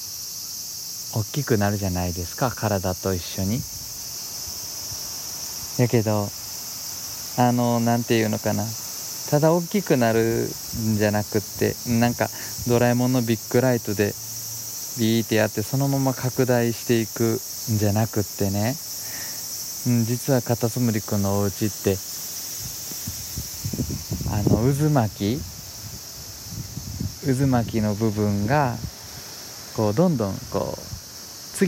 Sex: male